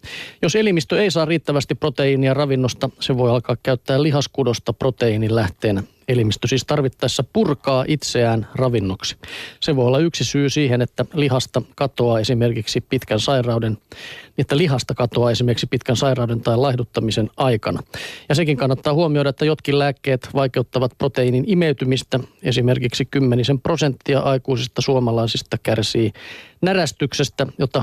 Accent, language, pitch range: native, Finnish, 120-145 Hz